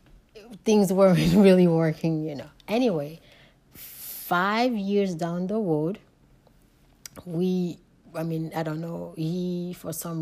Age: 30-49